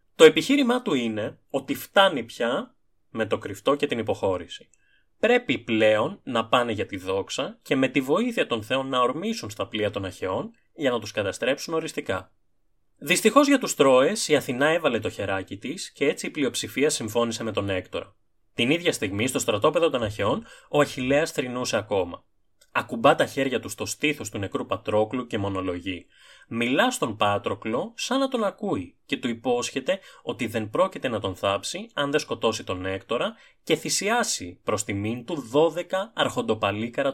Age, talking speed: 20-39, 170 wpm